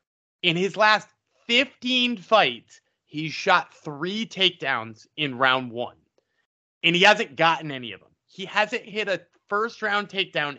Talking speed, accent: 140 wpm, American